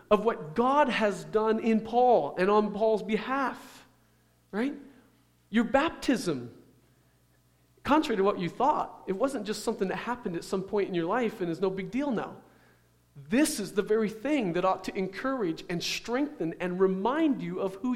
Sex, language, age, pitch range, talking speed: male, English, 40-59, 195-270 Hz, 175 wpm